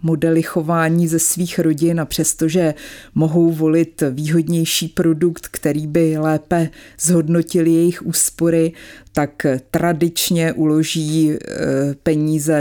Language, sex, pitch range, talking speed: Czech, female, 150-170 Hz, 100 wpm